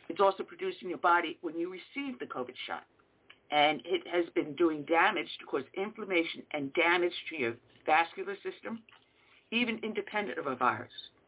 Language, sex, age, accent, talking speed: English, female, 60-79, American, 170 wpm